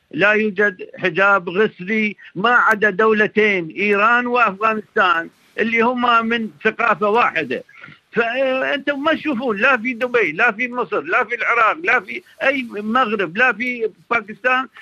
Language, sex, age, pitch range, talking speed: Arabic, male, 50-69, 190-245 Hz, 135 wpm